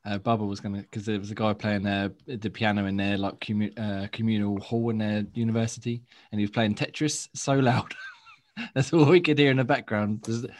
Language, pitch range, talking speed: English, 110-125 Hz, 210 wpm